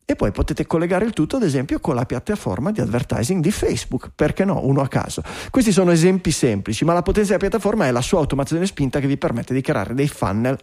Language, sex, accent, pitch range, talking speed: Italian, male, native, 130-185 Hz, 230 wpm